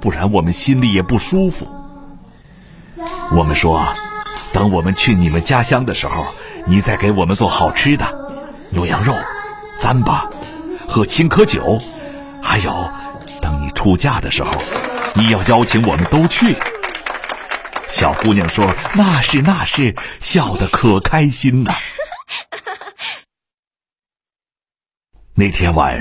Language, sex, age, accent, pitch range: Chinese, male, 50-69, native, 85-140 Hz